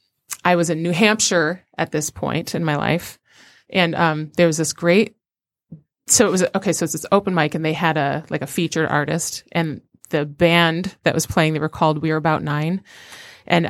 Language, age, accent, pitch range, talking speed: English, 30-49, American, 155-195 Hz, 210 wpm